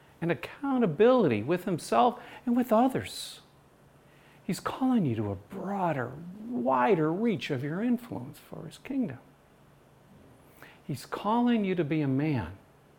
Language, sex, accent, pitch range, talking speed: English, male, American, 130-200 Hz, 130 wpm